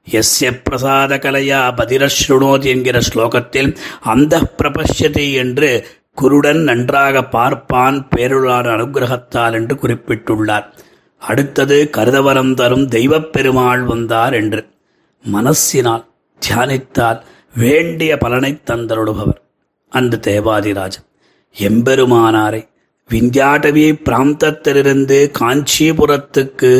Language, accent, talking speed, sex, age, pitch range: Tamil, native, 75 wpm, male, 30-49, 115-135 Hz